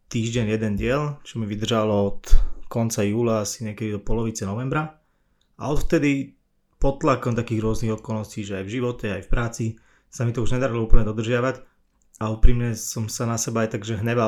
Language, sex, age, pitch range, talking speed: Slovak, male, 20-39, 110-125 Hz, 185 wpm